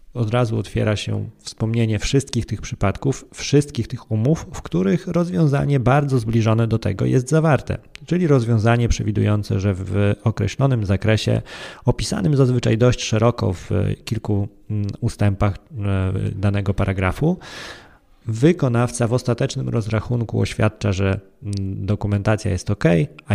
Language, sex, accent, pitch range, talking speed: Polish, male, native, 100-120 Hz, 120 wpm